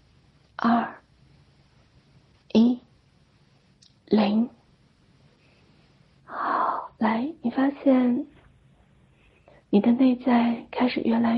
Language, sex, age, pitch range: Chinese, female, 30-49, 225-255 Hz